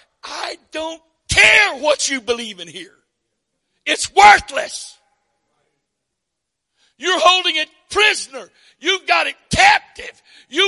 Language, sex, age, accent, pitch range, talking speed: English, male, 60-79, American, 215-365 Hz, 105 wpm